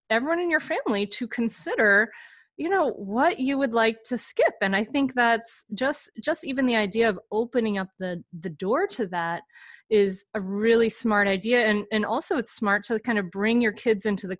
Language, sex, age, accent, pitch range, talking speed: English, female, 30-49, American, 185-230 Hz, 205 wpm